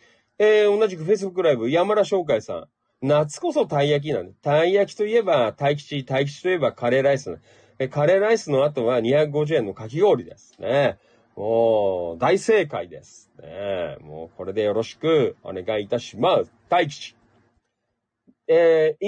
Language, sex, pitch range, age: Japanese, male, 120-175 Hz, 40-59